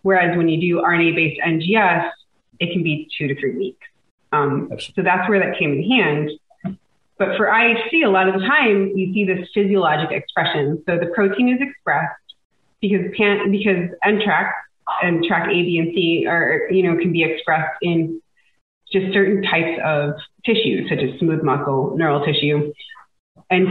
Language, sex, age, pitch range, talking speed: English, female, 30-49, 160-205 Hz, 170 wpm